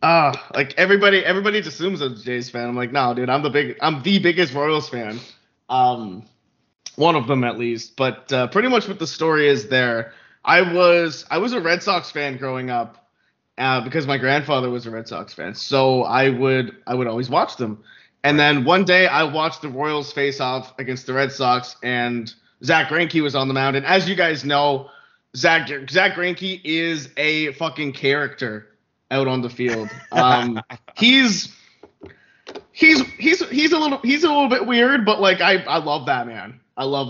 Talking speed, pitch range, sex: 195 wpm, 125-165 Hz, male